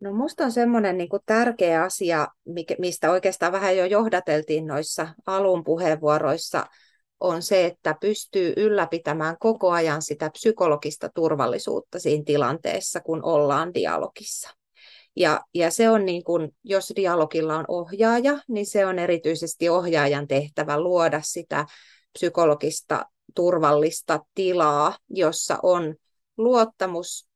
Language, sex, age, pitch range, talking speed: Finnish, female, 30-49, 155-195 Hz, 120 wpm